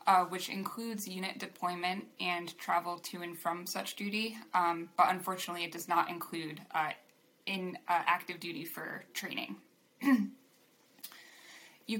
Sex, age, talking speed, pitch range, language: female, 20-39, 135 wpm, 175-200 Hz, English